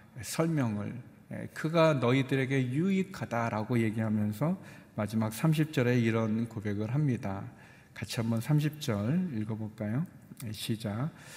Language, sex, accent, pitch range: Korean, male, native, 115-155 Hz